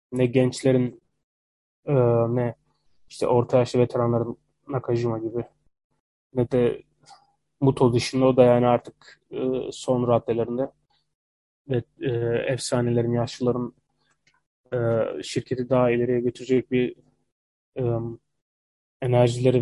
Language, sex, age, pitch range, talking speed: Turkish, male, 20-39, 120-130 Hz, 85 wpm